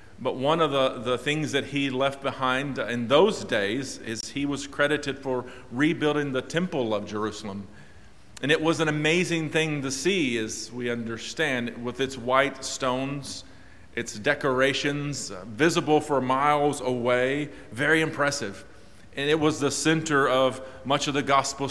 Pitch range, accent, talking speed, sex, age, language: 115-145 Hz, American, 160 wpm, male, 40-59, English